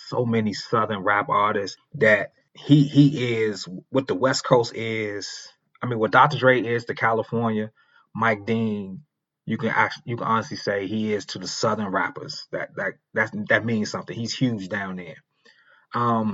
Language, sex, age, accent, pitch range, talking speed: English, male, 20-39, American, 105-125 Hz, 175 wpm